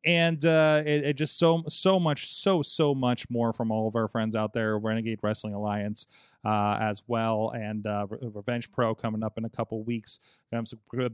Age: 30-49